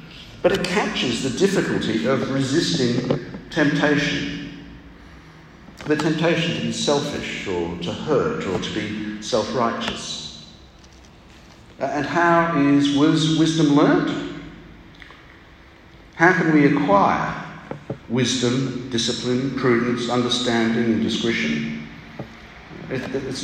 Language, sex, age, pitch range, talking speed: English, male, 50-69, 120-165 Hz, 95 wpm